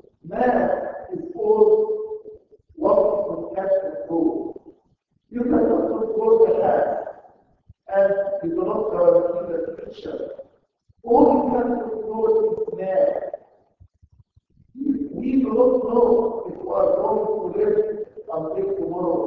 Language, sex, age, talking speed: English, male, 50-69, 115 wpm